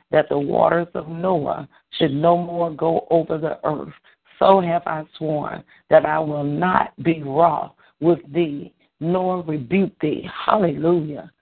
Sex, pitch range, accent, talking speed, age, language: female, 150-175 Hz, American, 145 wpm, 50-69, English